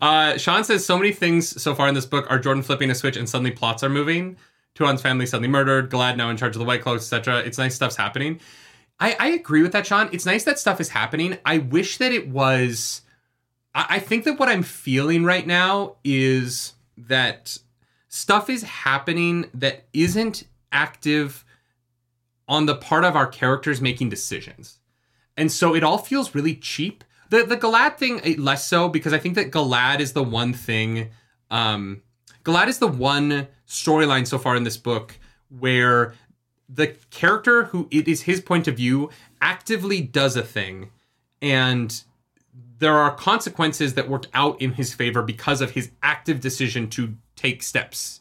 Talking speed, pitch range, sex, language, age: 180 wpm, 125-165 Hz, male, English, 30-49